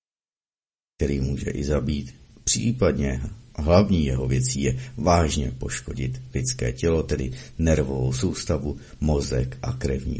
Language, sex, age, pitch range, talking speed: Czech, male, 50-69, 70-110 Hz, 110 wpm